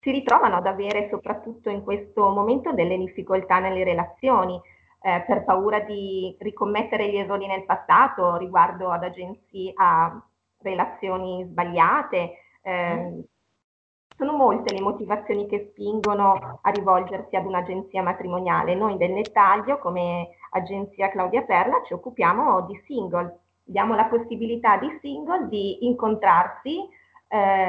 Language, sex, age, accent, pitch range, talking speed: Italian, female, 30-49, native, 185-215 Hz, 125 wpm